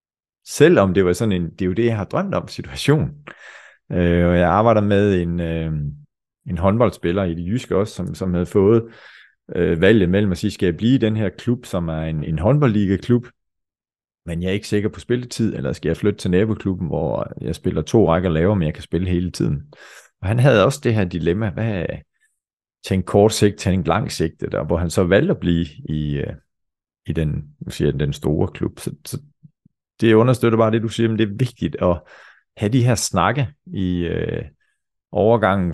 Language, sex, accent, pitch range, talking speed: Danish, male, native, 85-110 Hz, 210 wpm